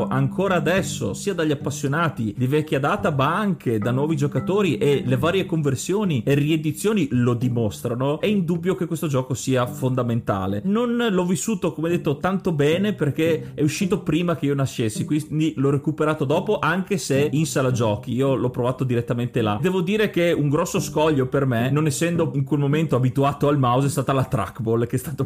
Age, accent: 30-49, native